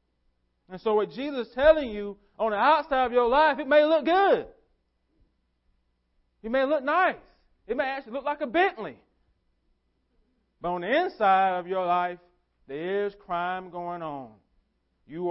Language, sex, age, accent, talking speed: English, male, 40-59, American, 155 wpm